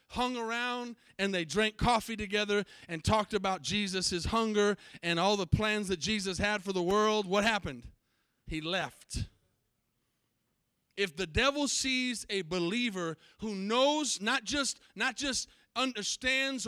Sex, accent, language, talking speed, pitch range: male, American, English, 135 wpm, 180-245 Hz